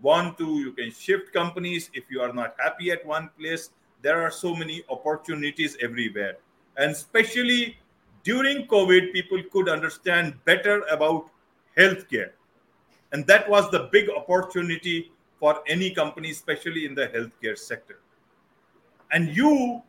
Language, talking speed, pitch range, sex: English, 140 wpm, 180-260 Hz, male